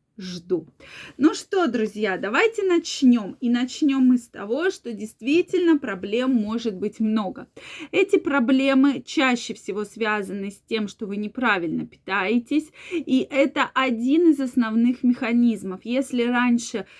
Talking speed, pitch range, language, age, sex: 125 wpm, 210-265 Hz, Russian, 20-39, female